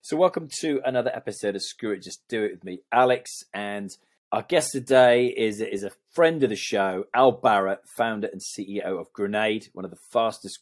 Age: 30-49